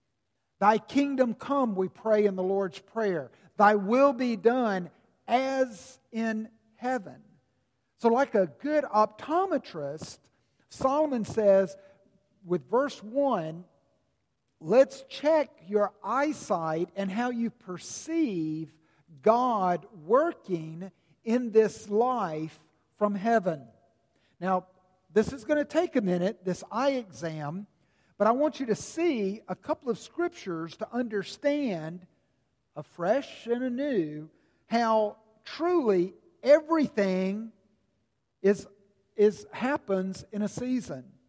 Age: 50-69